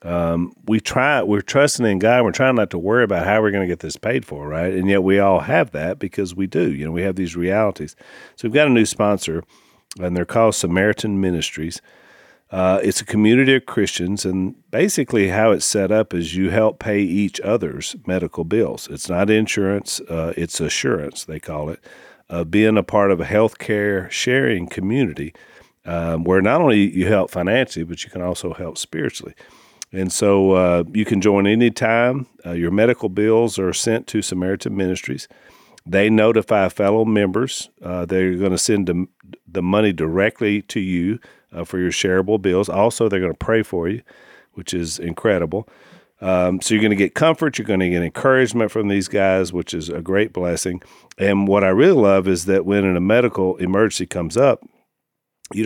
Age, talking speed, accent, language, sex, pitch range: 40-59, 190 wpm, American, English, male, 90-110 Hz